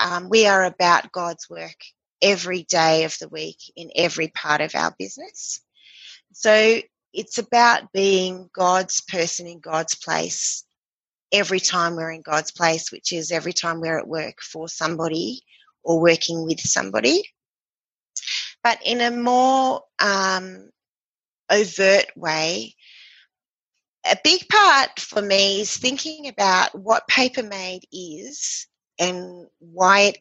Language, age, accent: English, 30-49, Australian